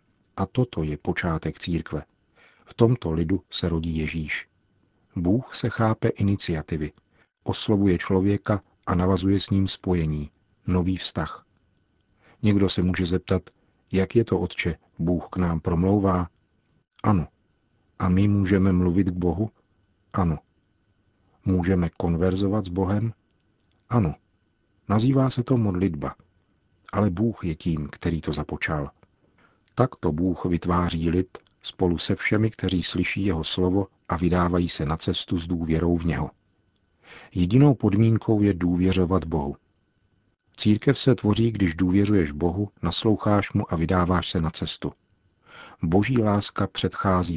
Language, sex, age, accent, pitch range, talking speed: Czech, male, 50-69, native, 85-105 Hz, 130 wpm